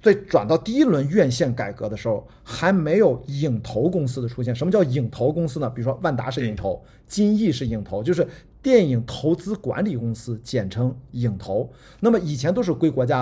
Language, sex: Chinese, male